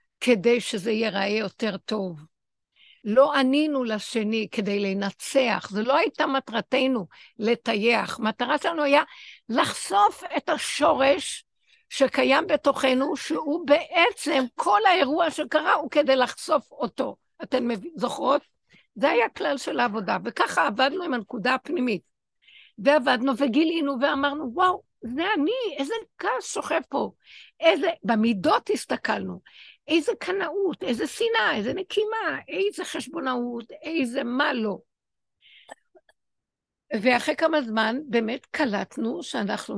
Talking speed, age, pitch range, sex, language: 110 wpm, 60-79, 230-315 Hz, female, Hebrew